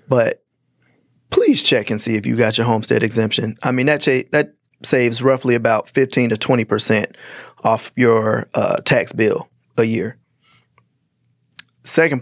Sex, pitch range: male, 120-145 Hz